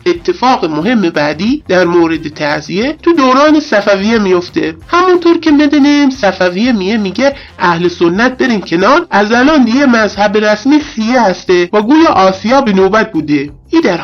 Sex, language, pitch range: male, Persian, 180-280 Hz